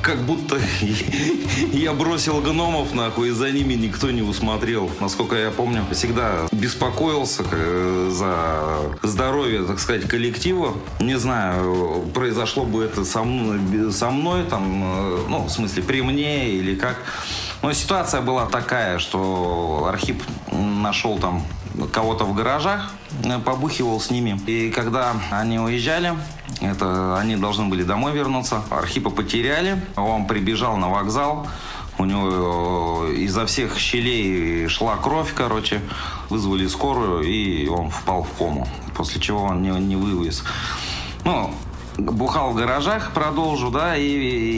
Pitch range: 95-125 Hz